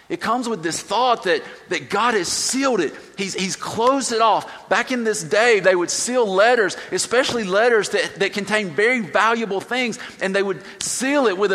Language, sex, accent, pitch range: English, male, American, 195-255 Hz